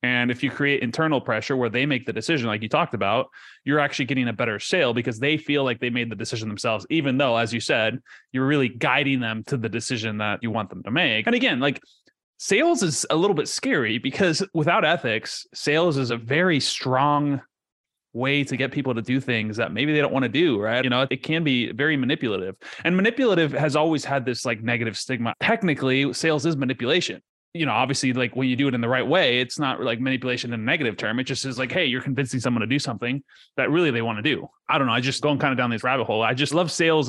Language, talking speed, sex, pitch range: English, 250 wpm, male, 120-155 Hz